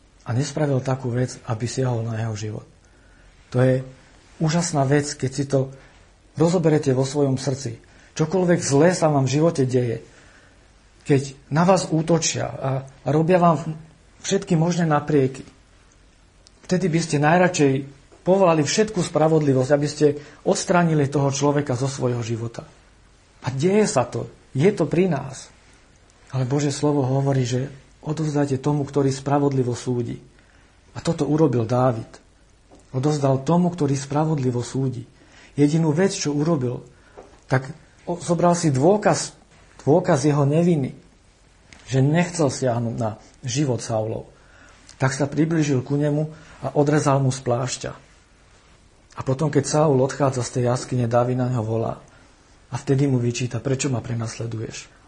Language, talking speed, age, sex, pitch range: Slovak, 135 wpm, 50-69, male, 120-150 Hz